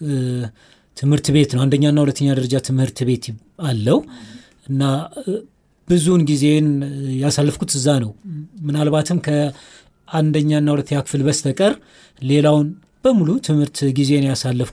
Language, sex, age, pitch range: Amharic, male, 30-49, 135-170 Hz